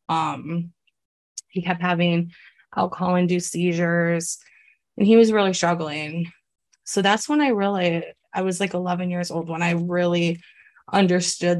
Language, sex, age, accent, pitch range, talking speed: English, female, 20-39, American, 170-185 Hz, 140 wpm